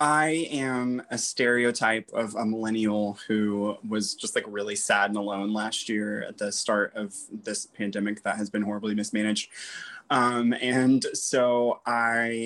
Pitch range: 105-130 Hz